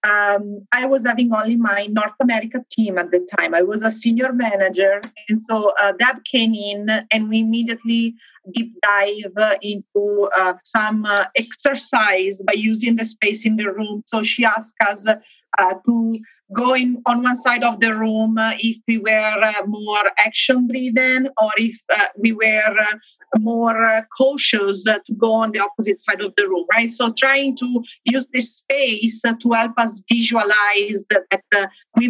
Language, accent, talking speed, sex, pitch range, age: English, Italian, 185 wpm, female, 210-245 Hz, 40-59